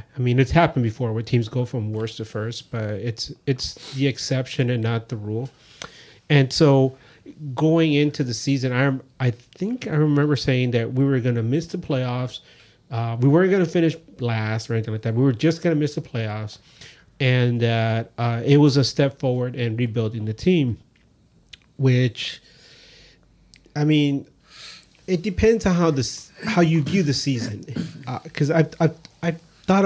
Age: 30-49